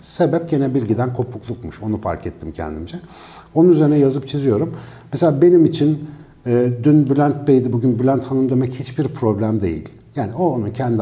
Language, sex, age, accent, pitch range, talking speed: Turkish, male, 60-79, native, 105-150 Hz, 165 wpm